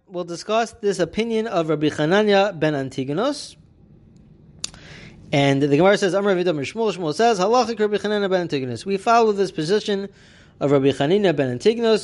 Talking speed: 155 wpm